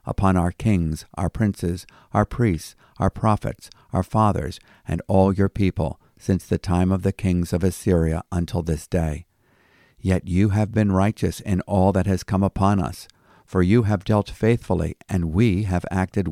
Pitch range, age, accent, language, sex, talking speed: 80-100 Hz, 50-69, American, English, male, 175 wpm